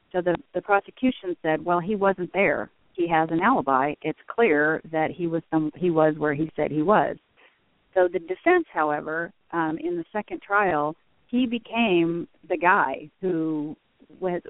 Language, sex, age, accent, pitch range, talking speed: English, female, 40-59, American, 155-200 Hz, 170 wpm